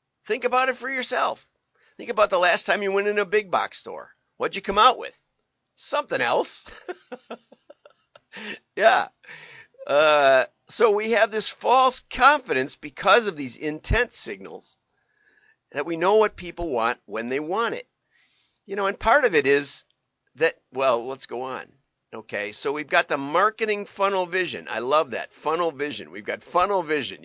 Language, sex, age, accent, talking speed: English, male, 50-69, American, 165 wpm